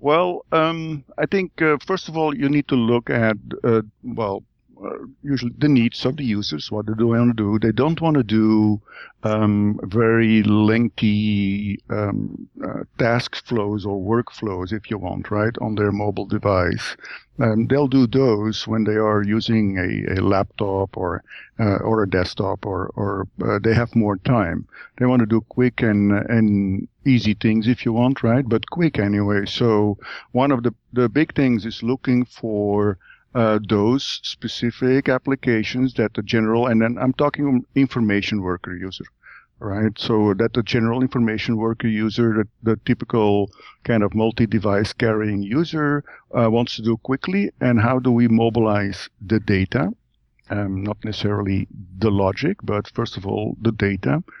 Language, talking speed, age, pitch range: English, 170 wpm, 60-79, 105-125 Hz